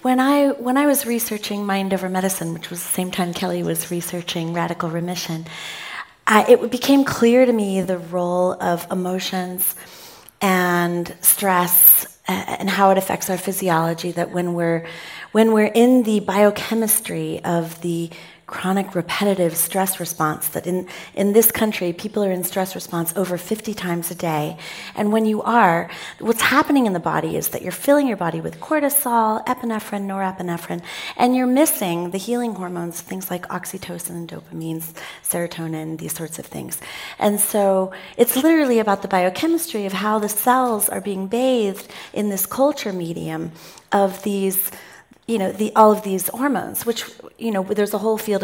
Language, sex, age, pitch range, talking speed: English, female, 30-49, 175-225 Hz, 165 wpm